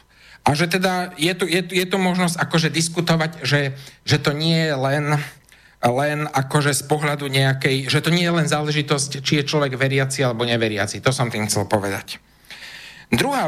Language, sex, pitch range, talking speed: Slovak, male, 125-170 Hz, 180 wpm